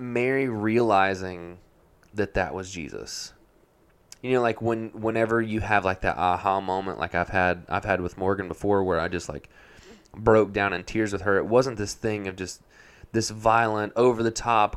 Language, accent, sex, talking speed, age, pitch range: English, American, male, 185 wpm, 20-39, 95-110 Hz